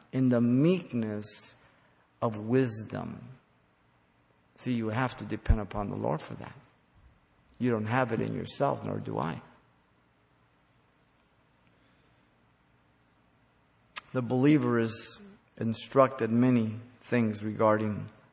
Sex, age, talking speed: male, 50-69, 100 wpm